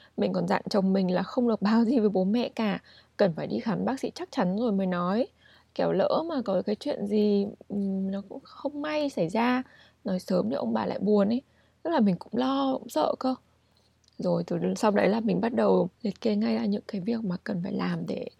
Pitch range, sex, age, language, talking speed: 190-240 Hz, female, 20-39, Vietnamese, 240 wpm